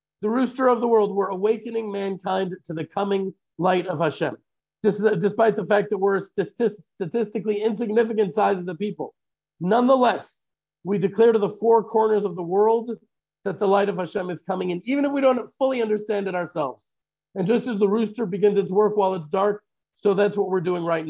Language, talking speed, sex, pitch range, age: English, 190 wpm, male, 190-225 Hz, 40-59